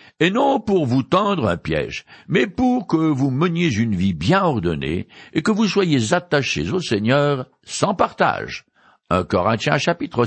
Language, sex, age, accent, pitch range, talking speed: French, male, 60-79, French, 110-165 Hz, 175 wpm